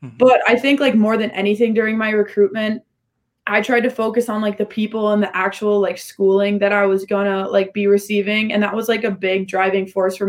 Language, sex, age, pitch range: English, female, 20-39, 200-225 Hz